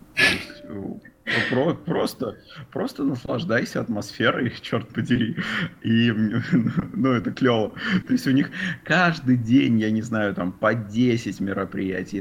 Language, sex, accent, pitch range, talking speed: Russian, male, native, 100-120 Hz, 125 wpm